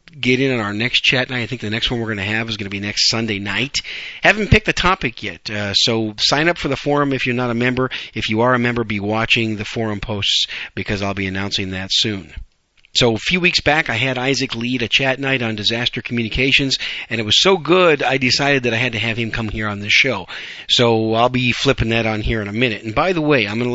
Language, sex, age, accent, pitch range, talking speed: English, male, 40-59, American, 105-130 Hz, 270 wpm